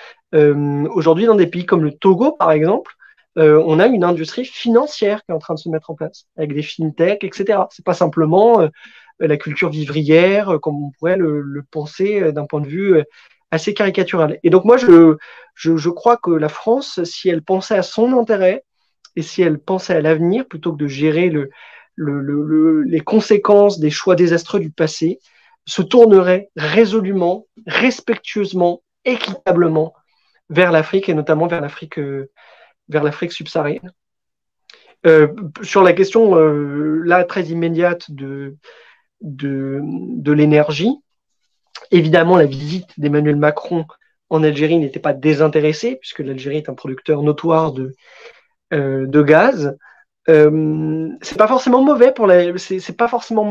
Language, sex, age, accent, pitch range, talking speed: French, male, 30-49, French, 155-195 Hz, 155 wpm